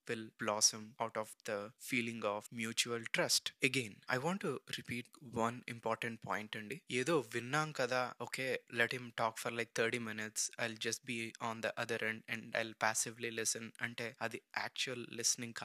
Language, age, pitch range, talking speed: Telugu, 20-39, 115-140 Hz, 180 wpm